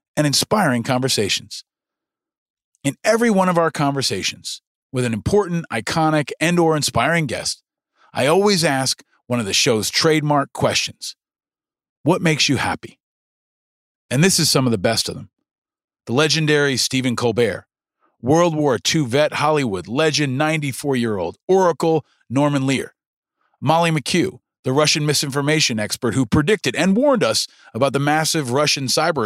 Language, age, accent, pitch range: English, 40-59, American, 125-165 Hz